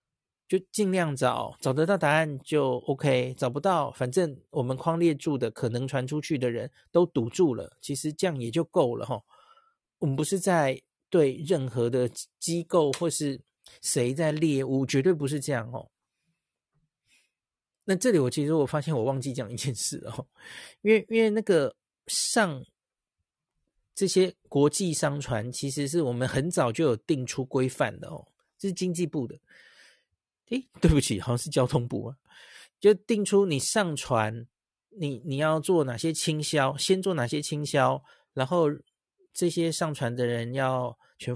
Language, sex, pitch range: Chinese, male, 130-165 Hz